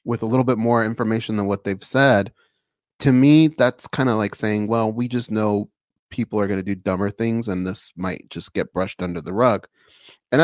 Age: 30-49